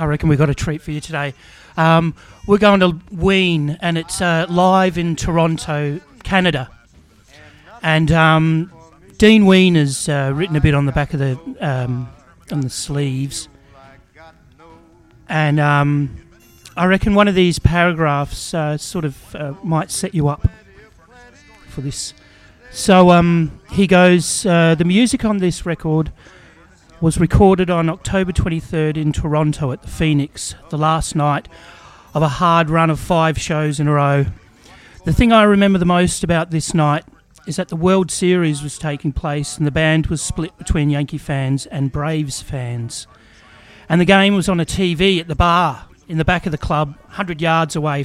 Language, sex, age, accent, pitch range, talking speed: English, male, 40-59, Australian, 145-180 Hz, 170 wpm